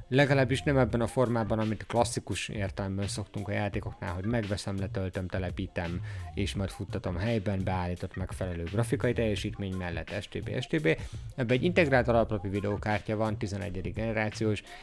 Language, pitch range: Hungarian, 100-130 Hz